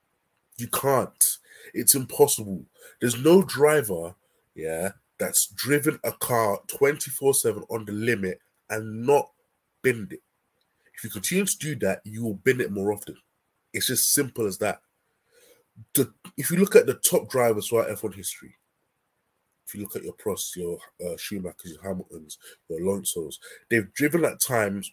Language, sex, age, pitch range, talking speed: English, male, 20-39, 105-155 Hz, 160 wpm